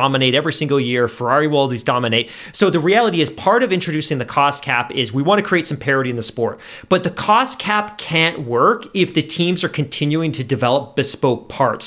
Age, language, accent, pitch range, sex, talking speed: 30-49, English, American, 140-180 Hz, male, 210 wpm